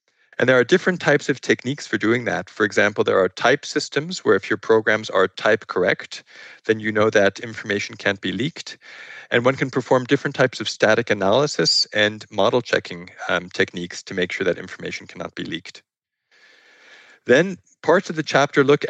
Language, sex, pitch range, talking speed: English, male, 110-135 Hz, 185 wpm